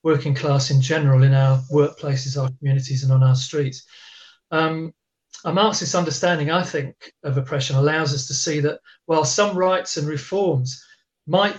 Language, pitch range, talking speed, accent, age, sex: English, 135-165 Hz, 165 wpm, British, 40-59, male